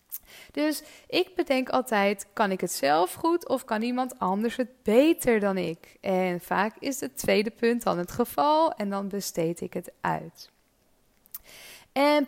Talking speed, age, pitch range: 160 wpm, 20-39, 195-260 Hz